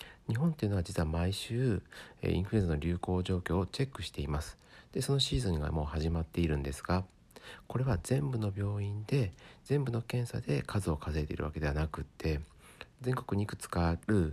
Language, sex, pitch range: Japanese, male, 85-115 Hz